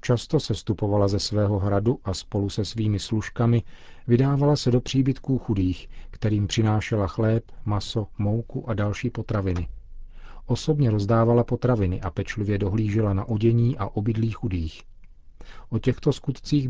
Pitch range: 100-120 Hz